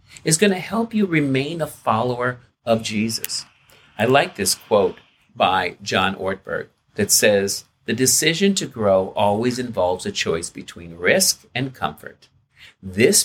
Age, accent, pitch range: 50-69, American, 110-170 Hz